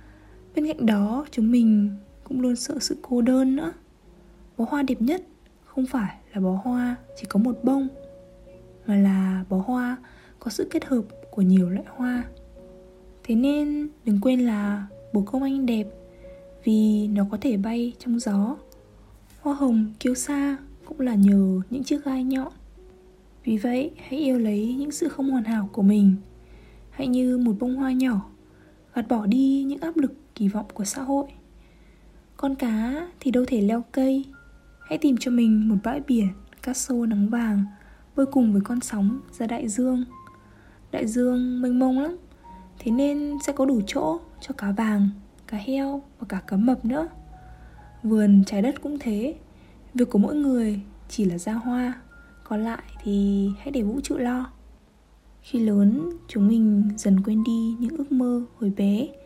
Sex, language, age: female, Vietnamese, 20-39